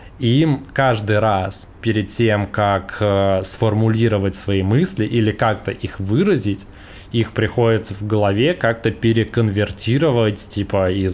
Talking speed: 100 wpm